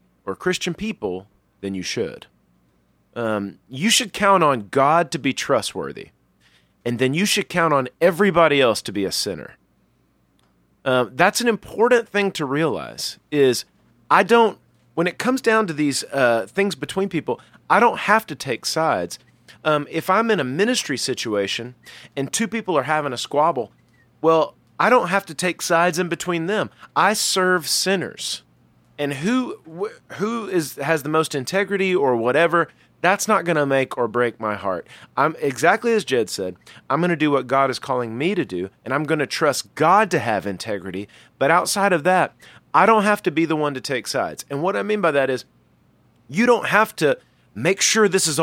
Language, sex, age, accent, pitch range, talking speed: English, male, 30-49, American, 120-185 Hz, 190 wpm